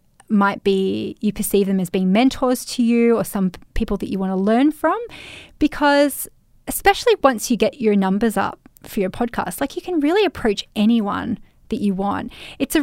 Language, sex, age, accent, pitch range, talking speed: English, female, 20-39, Australian, 200-260 Hz, 190 wpm